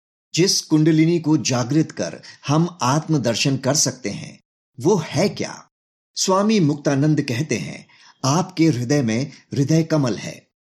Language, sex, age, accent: Hindi, male, 50-69, native